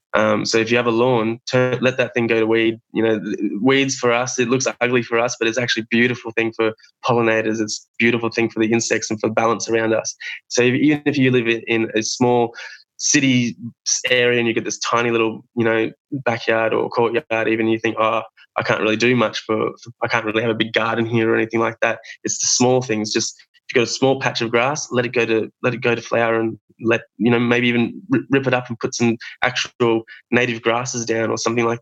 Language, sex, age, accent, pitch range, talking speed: English, male, 20-39, Australian, 110-125 Hz, 245 wpm